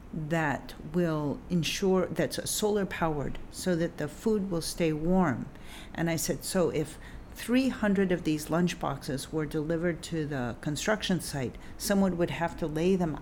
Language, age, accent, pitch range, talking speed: English, 50-69, American, 155-190 Hz, 160 wpm